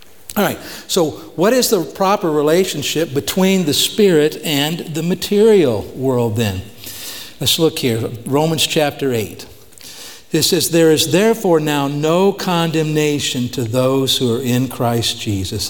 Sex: male